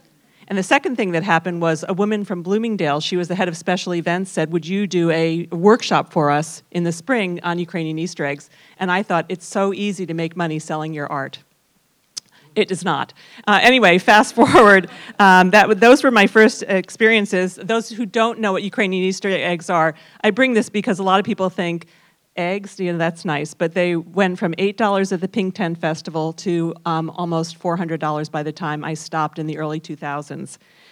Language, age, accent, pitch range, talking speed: English, 40-59, American, 165-195 Hz, 200 wpm